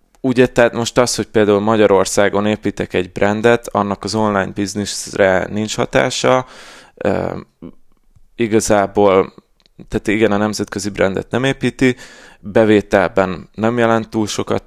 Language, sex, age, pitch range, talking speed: Hungarian, male, 20-39, 100-115 Hz, 125 wpm